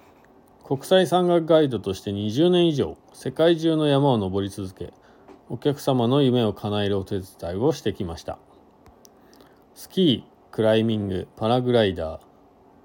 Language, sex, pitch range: Japanese, male, 100-150 Hz